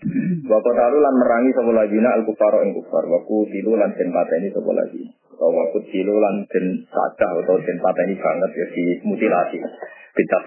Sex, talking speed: male, 190 wpm